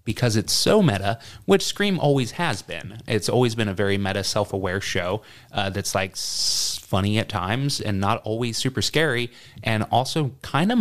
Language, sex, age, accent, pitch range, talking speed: English, male, 30-49, American, 100-125 Hz, 185 wpm